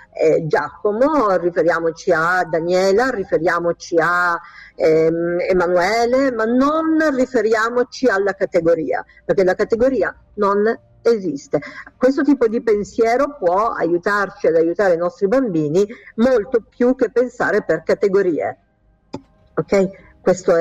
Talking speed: 110 wpm